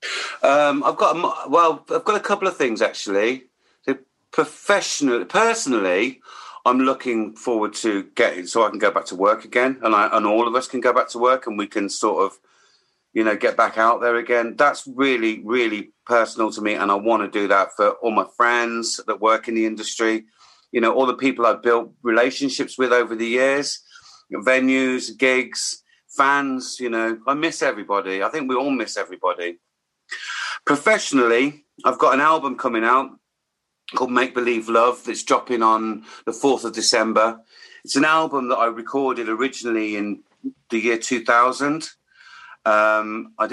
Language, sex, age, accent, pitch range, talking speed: English, male, 40-59, British, 110-135 Hz, 180 wpm